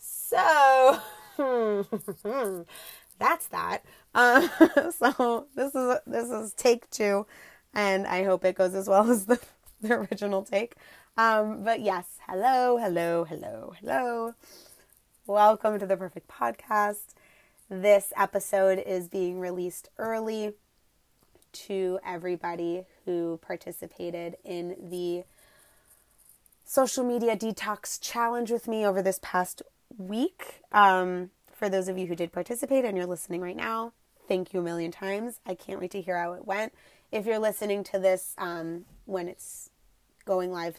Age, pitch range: 20-39, 180-225 Hz